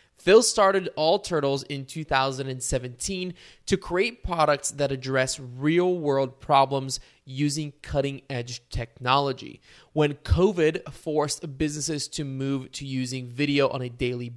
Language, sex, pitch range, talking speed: English, male, 130-165 Hz, 115 wpm